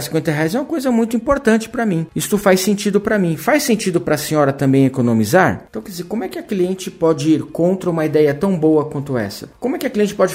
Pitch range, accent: 150-200 Hz, Brazilian